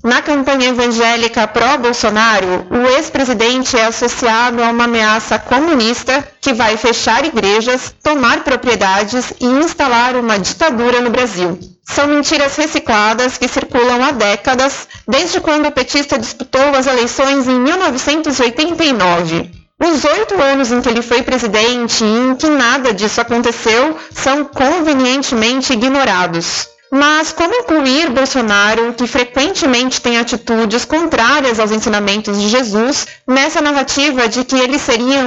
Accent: Brazilian